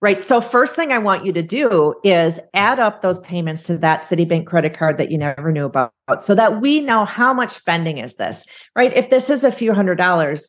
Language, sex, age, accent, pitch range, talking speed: English, female, 40-59, American, 165-225 Hz, 235 wpm